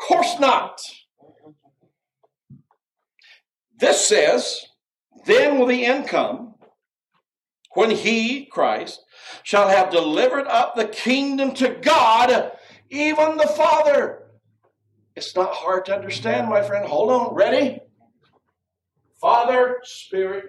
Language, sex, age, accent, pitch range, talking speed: English, male, 60-79, American, 185-305 Hz, 105 wpm